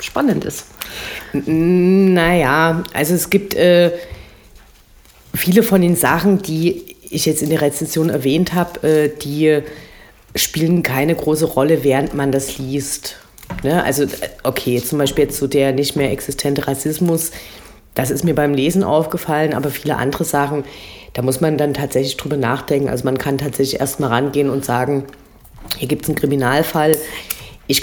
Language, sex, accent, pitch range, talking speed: German, female, German, 135-160 Hz, 155 wpm